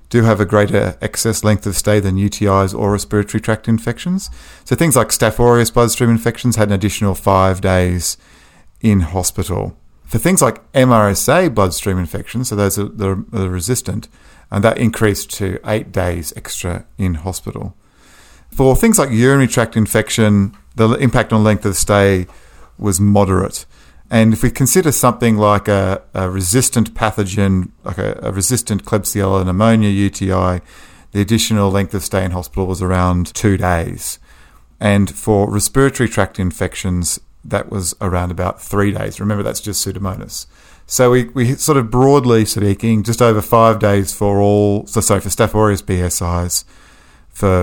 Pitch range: 95-110 Hz